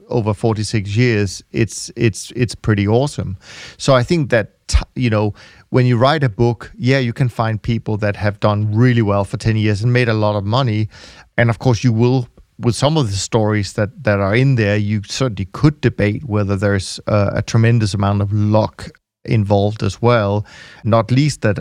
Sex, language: male, English